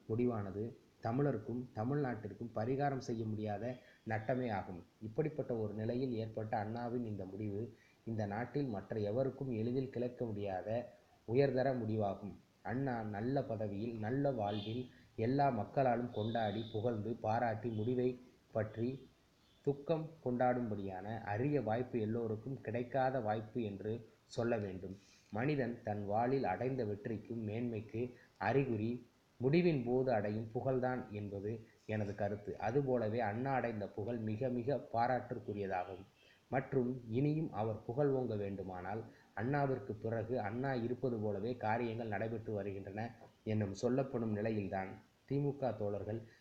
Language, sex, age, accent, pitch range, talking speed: Tamil, male, 20-39, native, 105-125 Hz, 110 wpm